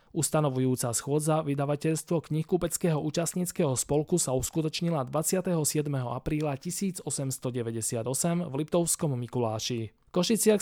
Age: 20-39